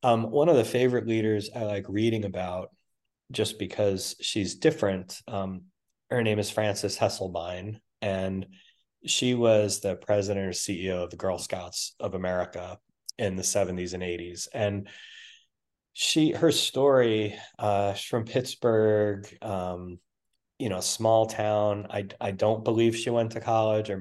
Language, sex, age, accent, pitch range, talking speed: English, male, 30-49, American, 90-110 Hz, 145 wpm